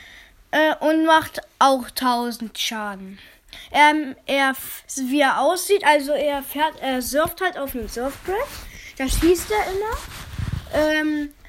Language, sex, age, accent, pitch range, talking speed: German, female, 10-29, German, 265-315 Hz, 125 wpm